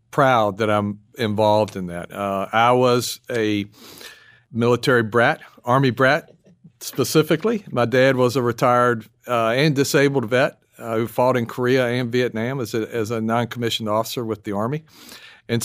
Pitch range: 110-135 Hz